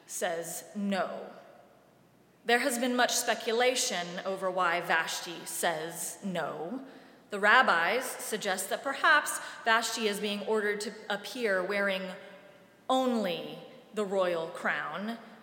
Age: 30-49